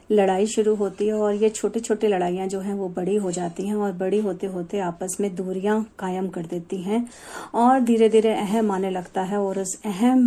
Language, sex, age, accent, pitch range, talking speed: Hindi, female, 50-69, native, 195-245 Hz, 210 wpm